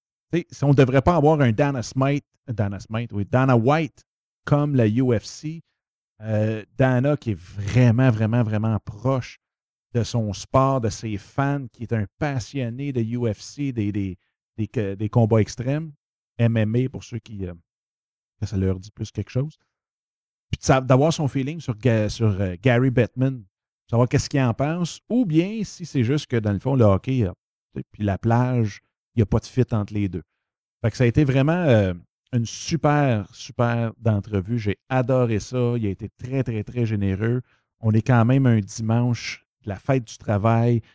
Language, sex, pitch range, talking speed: French, male, 110-140 Hz, 185 wpm